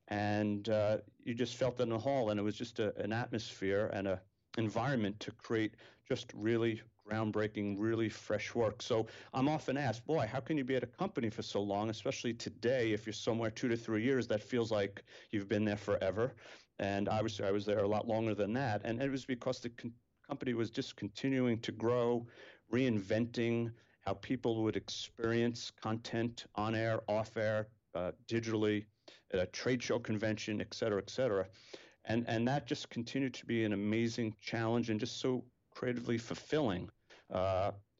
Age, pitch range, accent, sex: 40-59, 105-120 Hz, American, male